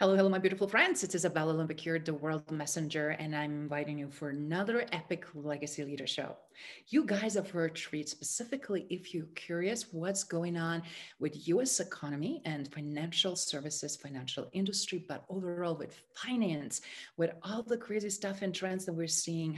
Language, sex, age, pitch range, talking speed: English, female, 40-59, 155-195 Hz, 170 wpm